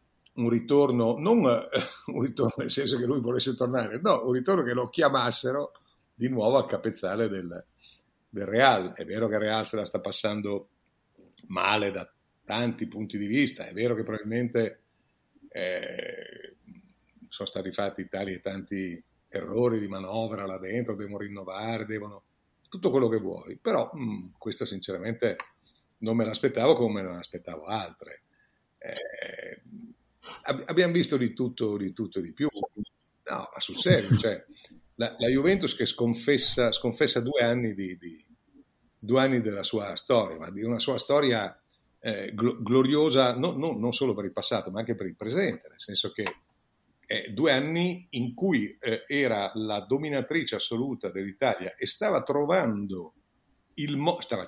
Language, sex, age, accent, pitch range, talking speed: Italian, male, 50-69, native, 105-135 Hz, 155 wpm